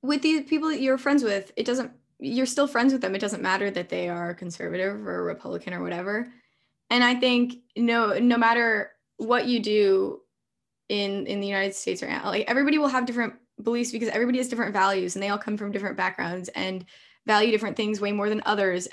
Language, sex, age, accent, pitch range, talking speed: English, female, 10-29, American, 200-245 Hz, 210 wpm